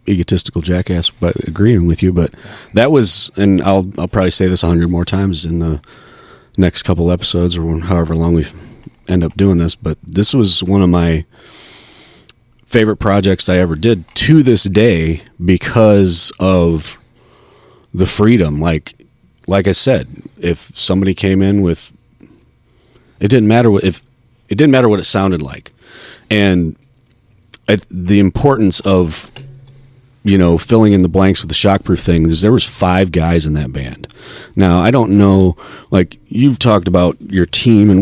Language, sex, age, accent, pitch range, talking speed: English, male, 30-49, American, 85-110 Hz, 165 wpm